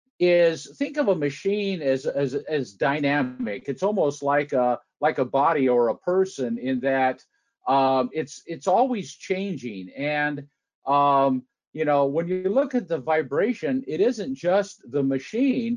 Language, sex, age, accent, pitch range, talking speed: English, male, 50-69, American, 145-200 Hz, 155 wpm